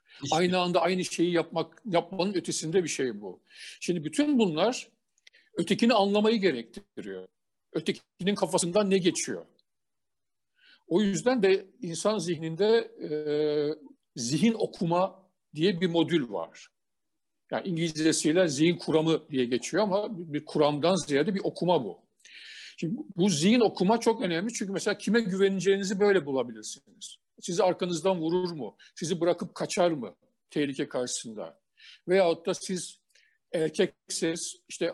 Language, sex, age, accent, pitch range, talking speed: Turkish, male, 50-69, native, 155-200 Hz, 125 wpm